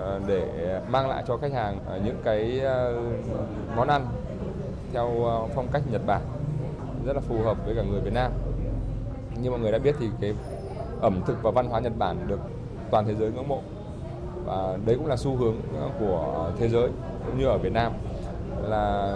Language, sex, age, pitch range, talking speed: Vietnamese, male, 20-39, 105-125 Hz, 185 wpm